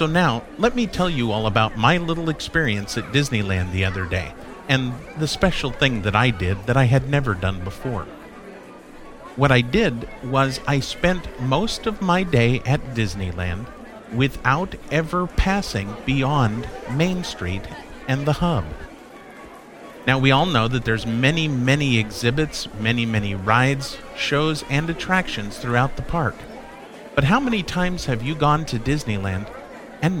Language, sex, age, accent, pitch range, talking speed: English, male, 50-69, American, 110-150 Hz, 155 wpm